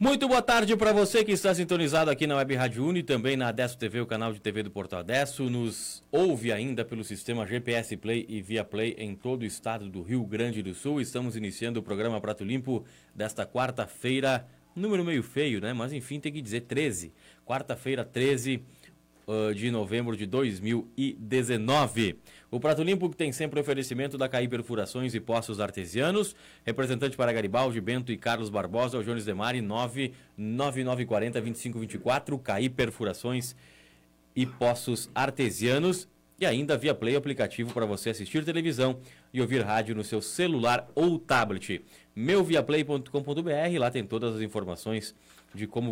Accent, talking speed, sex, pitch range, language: Brazilian, 160 wpm, male, 110-135 Hz, Portuguese